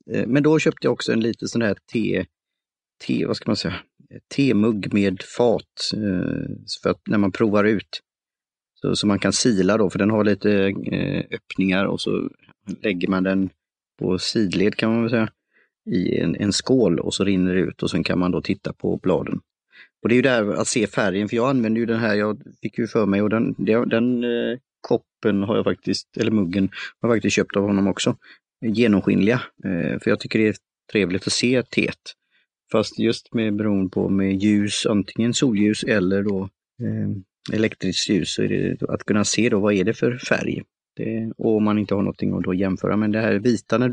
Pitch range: 95-115 Hz